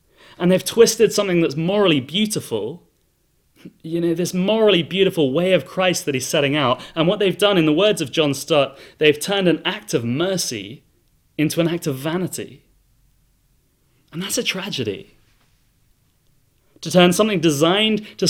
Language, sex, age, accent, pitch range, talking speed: English, male, 30-49, British, 130-170 Hz, 160 wpm